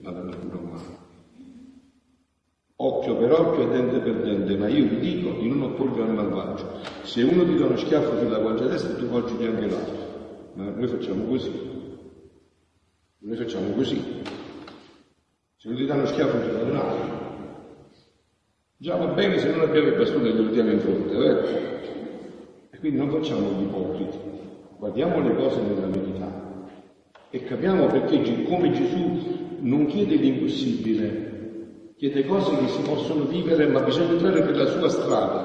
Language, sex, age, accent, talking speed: Italian, male, 50-69, native, 155 wpm